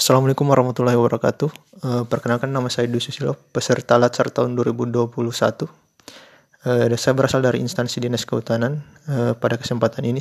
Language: Indonesian